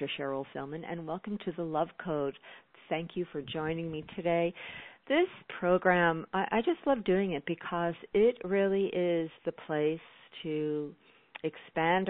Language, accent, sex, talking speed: English, American, female, 150 wpm